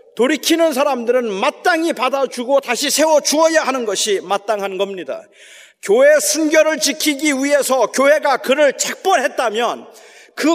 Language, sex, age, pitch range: Korean, male, 40-59, 215-305 Hz